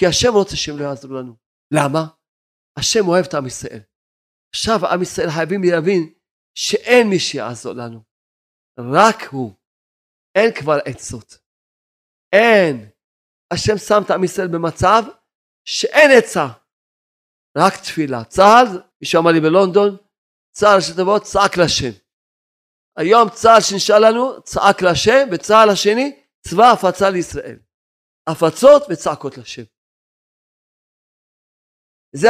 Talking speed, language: 115 wpm, Hebrew